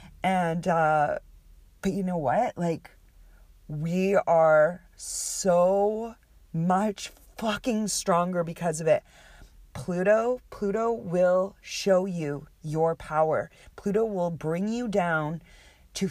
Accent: American